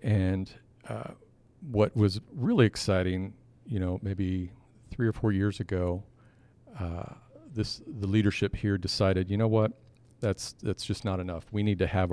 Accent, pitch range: American, 95-120 Hz